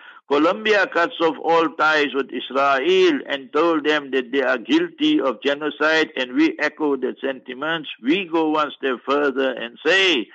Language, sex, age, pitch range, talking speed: English, male, 60-79, 135-215 Hz, 160 wpm